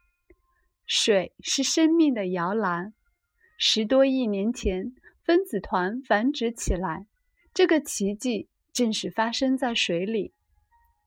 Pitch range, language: 205-325 Hz, Chinese